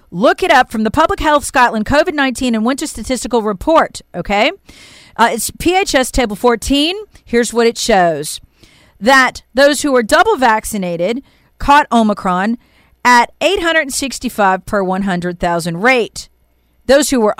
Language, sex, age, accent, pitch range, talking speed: English, female, 40-59, American, 205-295 Hz, 140 wpm